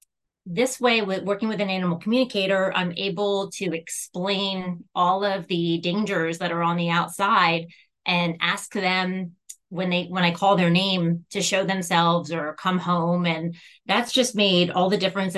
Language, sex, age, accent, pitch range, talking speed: English, female, 30-49, American, 170-195 Hz, 170 wpm